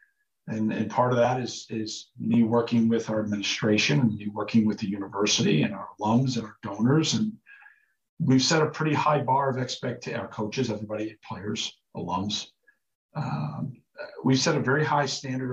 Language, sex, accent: English, male, American